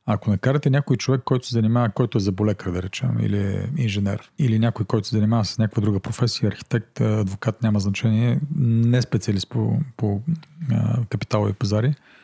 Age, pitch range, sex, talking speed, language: 40-59, 105-130 Hz, male, 165 wpm, Bulgarian